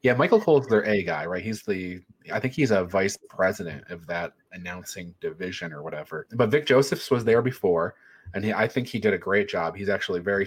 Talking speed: 220 wpm